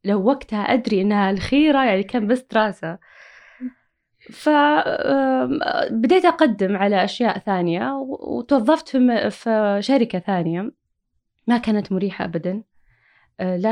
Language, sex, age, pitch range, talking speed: Arabic, female, 20-39, 200-265 Hz, 105 wpm